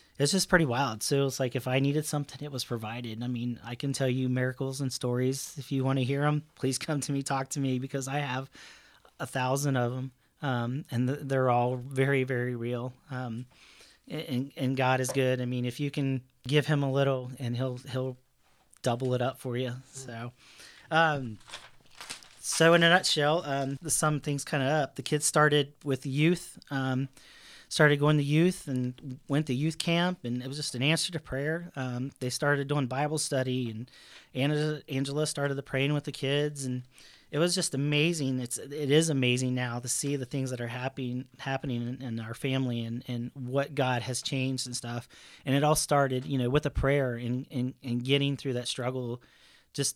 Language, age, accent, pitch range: English, 30-49, American, 125-145 Hz